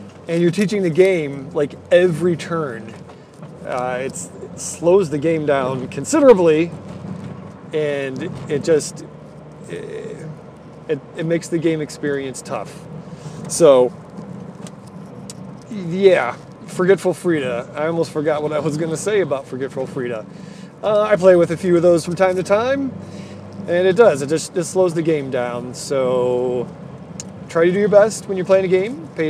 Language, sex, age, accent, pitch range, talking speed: English, male, 30-49, American, 145-190 Hz, 155 wpm